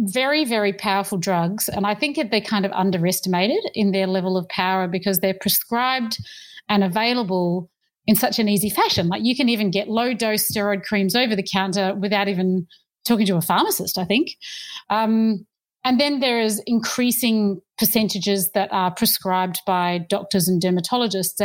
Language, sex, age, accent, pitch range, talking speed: English, female, 30-49, Australian, 190-230 Hz, 170 wpm